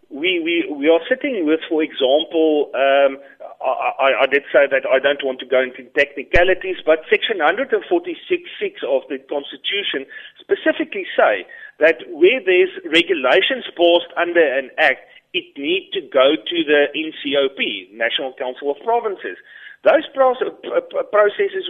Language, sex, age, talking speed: English, male, 40-59, 155 wpm